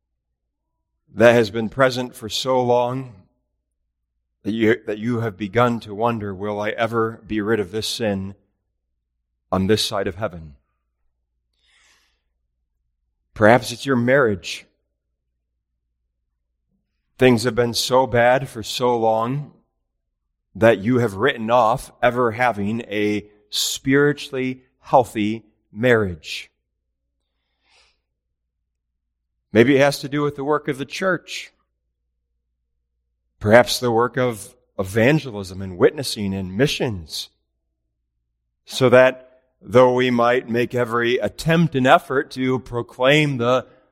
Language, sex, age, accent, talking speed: English, male, 40-59, American, 115 wpm